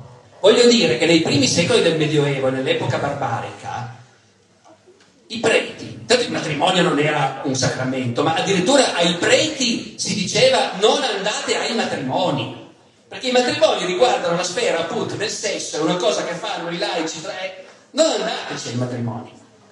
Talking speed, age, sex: 150 wpm, 40-59, male